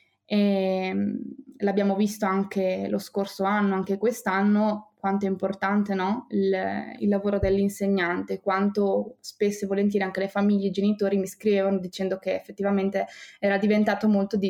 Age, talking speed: 20-39, 140 wpm